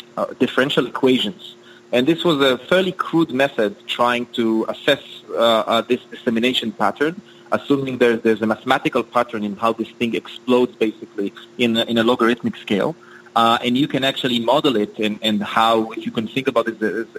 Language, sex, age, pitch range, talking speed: English, male, 30-49, 110-130 Hz, 180 wpm